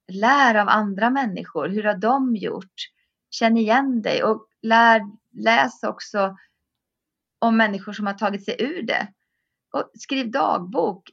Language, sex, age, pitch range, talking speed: Swedish, female, 30-49, 190-240 Hz, 140 wpm